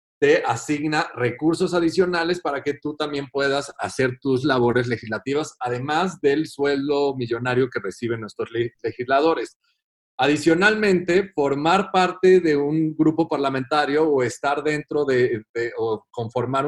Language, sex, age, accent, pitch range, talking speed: Spanish, male, 40-59, Mexican, 130-165 Hz, 125 wpm